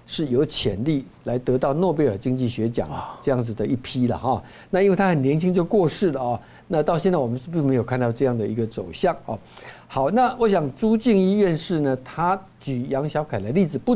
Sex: male